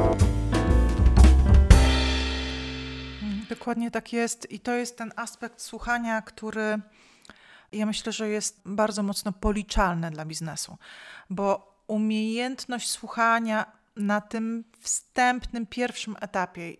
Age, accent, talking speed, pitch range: 40-59, native, 95 wpm, 185-220 Hz